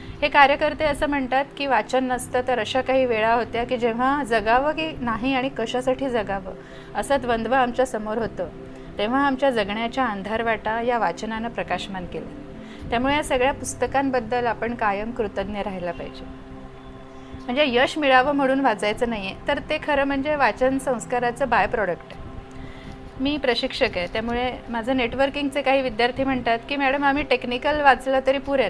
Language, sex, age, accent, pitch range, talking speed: Hindi, female, 30-49, native, 225-270 Hz, 140 wpm